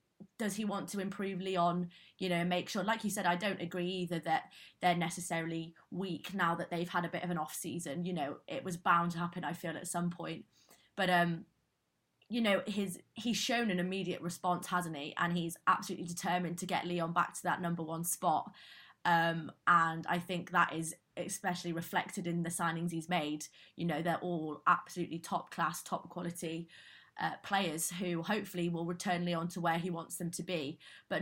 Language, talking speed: English, 200 wpm